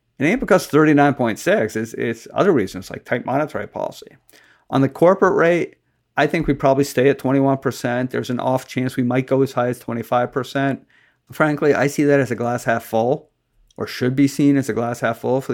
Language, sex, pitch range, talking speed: English, male, 120-145 Hz, 205 wpm